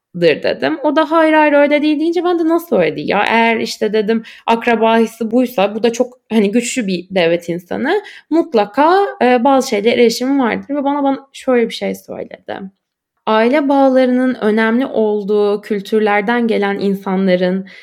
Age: 10-29